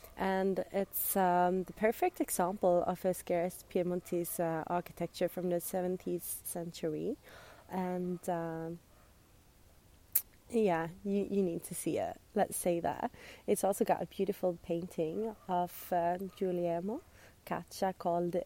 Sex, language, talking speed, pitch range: female, English, 125 wpm, 170-215 Hz